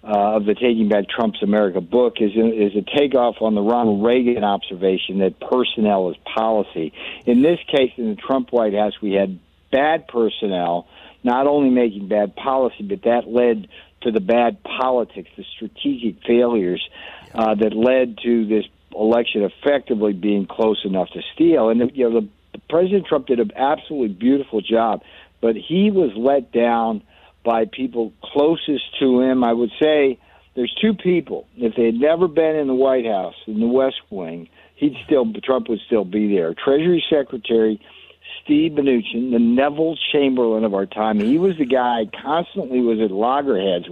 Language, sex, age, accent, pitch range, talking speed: English, male, 50-69, American, 105-140 Hz, 175 wpm